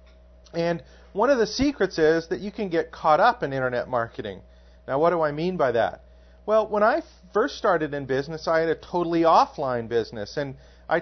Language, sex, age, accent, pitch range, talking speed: English, male, 40-59, American, 125-175 Hz, 200 wpm